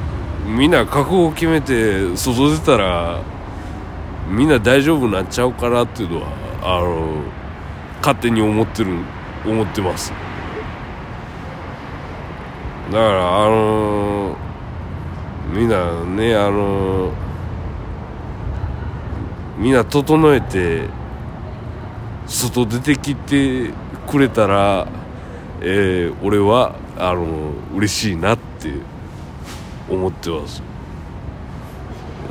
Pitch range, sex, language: 85-110 Hz, male, Japanese